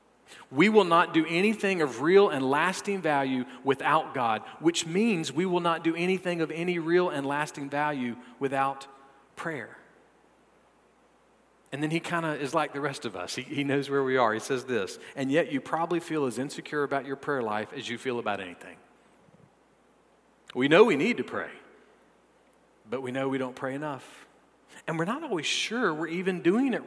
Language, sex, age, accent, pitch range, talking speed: English, male, 40-59, American, 135-185 Hz, 190 wpm